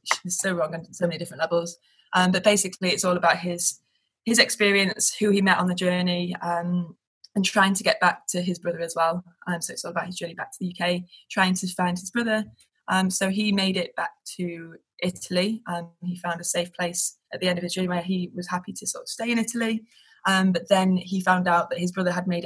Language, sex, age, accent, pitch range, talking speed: English, female, 20-39, British, 175-195 Hz, 250 wpm